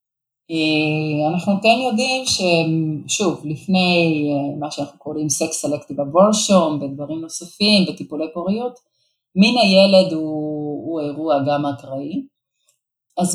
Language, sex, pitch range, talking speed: Hebrew, female, 150-200 Hz, 105 wpm